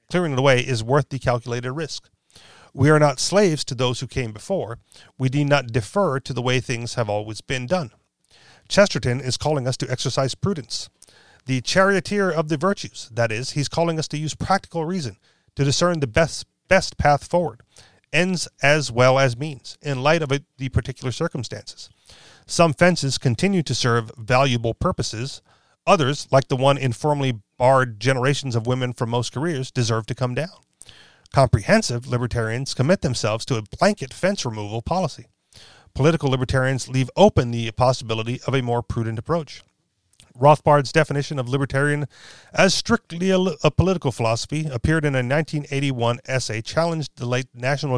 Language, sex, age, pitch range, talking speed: English, male, 40-59, 120-150 Hz, 160 wpm